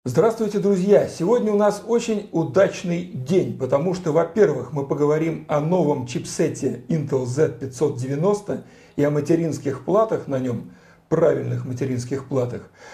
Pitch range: 150-195 Hz